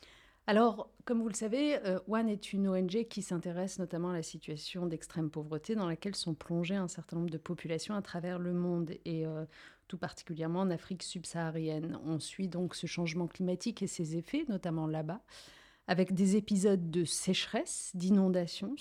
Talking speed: 170 wpm